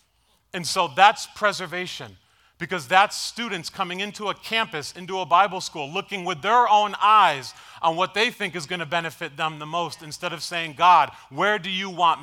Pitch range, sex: 110-175 Hz, male